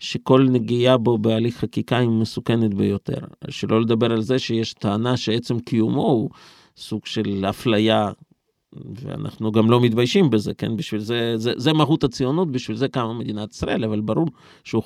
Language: Hebrew